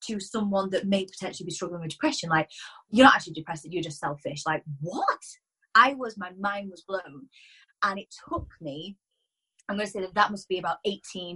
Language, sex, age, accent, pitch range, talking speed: English, female, 20-39, British, 170-210 Hz, 205 wpm